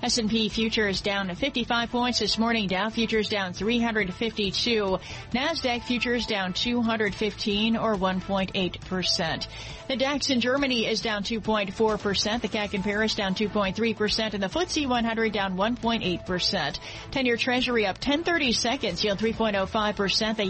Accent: American